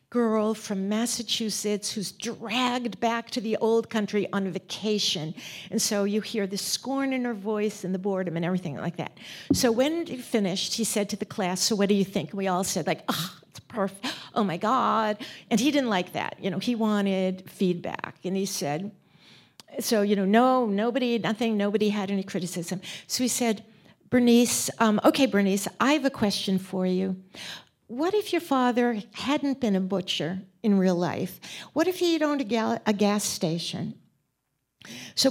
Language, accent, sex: English, American, female